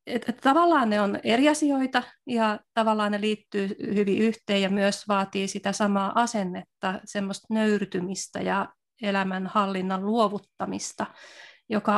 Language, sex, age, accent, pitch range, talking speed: Finnish, female, 30-49, native, 195-225 Hz, 120 wpm